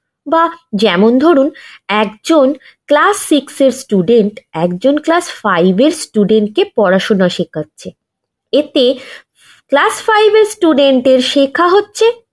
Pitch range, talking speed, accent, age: 205-315 Hz, 105 wpm, native, 20-39